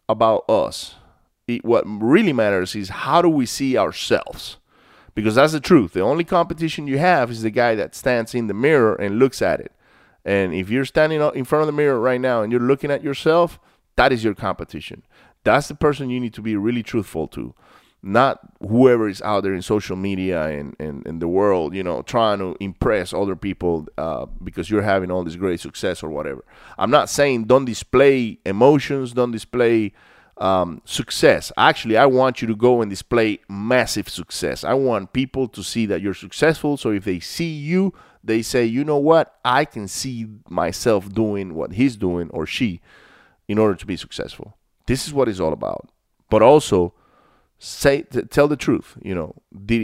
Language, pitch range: English, 100-135 Hz